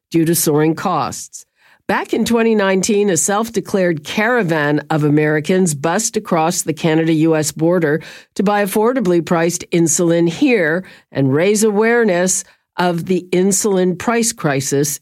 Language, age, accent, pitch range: English, 50-69, American, 150-205 Hz